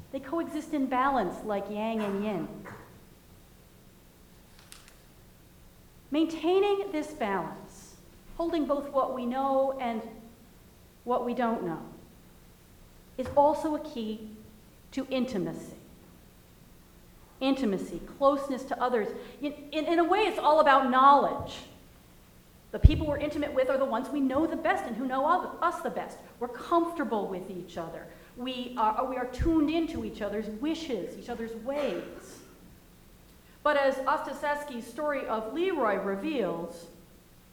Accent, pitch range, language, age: American, 195-290 Hz, English, 40-59